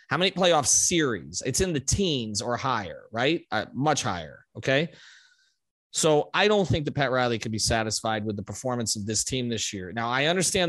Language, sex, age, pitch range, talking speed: English, male, 30-49, 115-145 Hz, 200 wpm